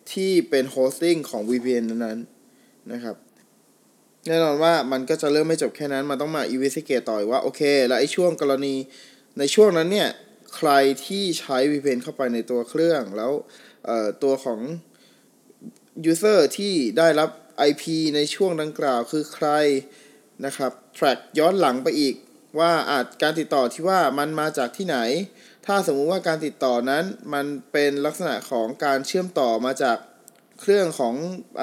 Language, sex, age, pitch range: Thai, male, 20-39, 130-165 Hz